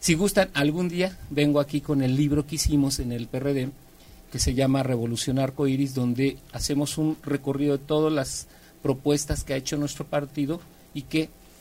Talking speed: 175 wpm